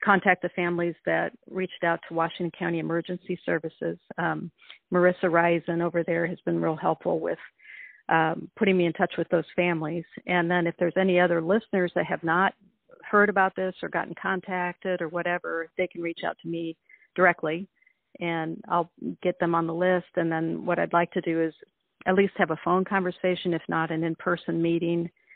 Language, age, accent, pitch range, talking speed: English, 50-69, American, 165-185 Hz, 190 wpm